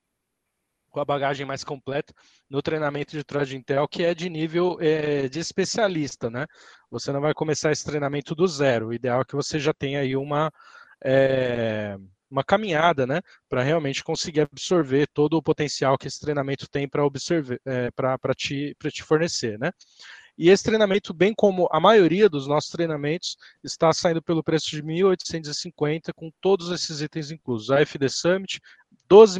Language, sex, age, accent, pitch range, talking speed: Portuguese, male, 20-39, Brazilian, 140-170 Hz, 170 wpm